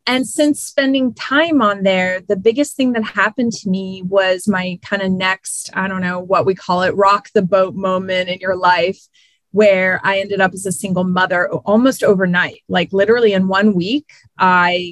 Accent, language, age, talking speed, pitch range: American, English, 30-49, 195 wpm, 180-210 Hz